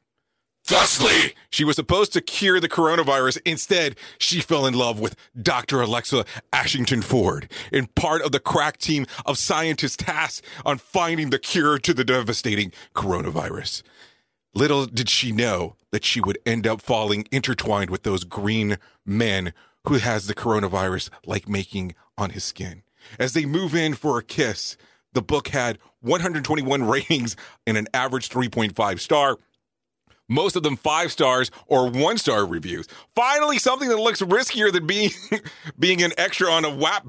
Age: 30-49